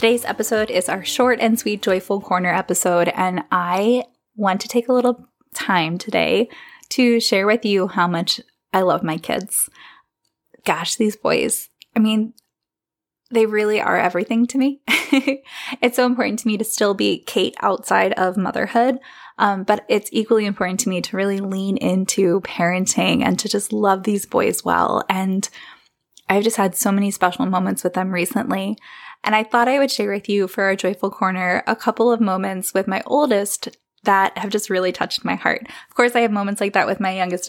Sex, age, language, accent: female, 20-39, English, American